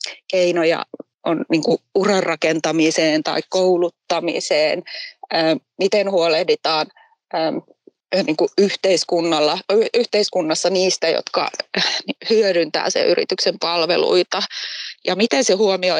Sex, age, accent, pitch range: female, 20-39, native, 170-220 Hz